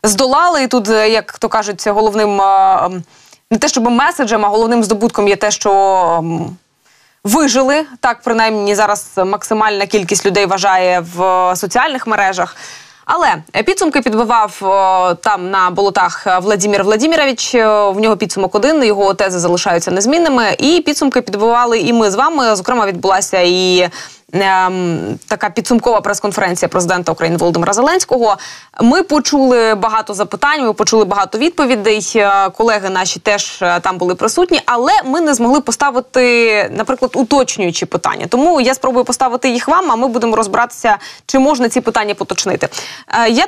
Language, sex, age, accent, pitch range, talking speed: Ukrainian, female, 20-39, native, 195-255 Hz, 135 wpm